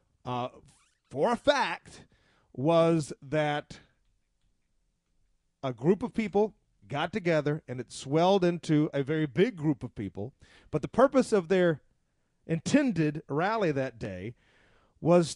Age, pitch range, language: 40-59, 140-180 Hz, English